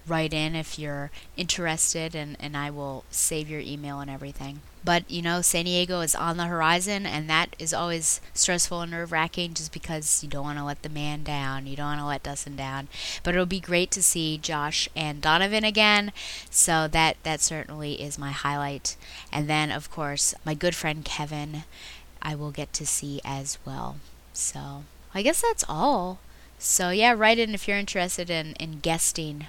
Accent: American